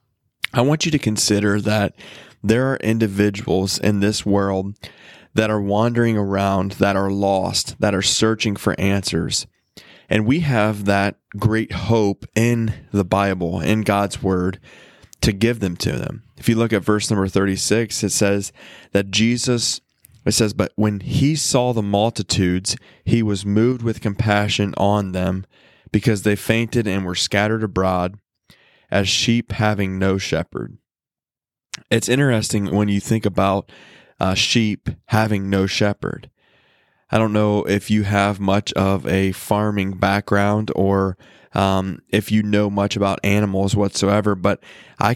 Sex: male